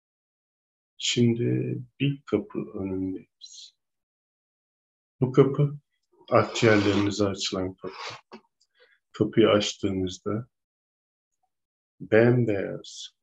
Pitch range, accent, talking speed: 95-105 Hz, native, 55 wpm